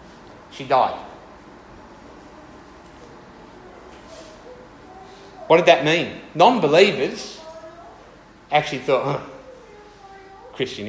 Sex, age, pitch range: male, 40-59, 140-195 Hz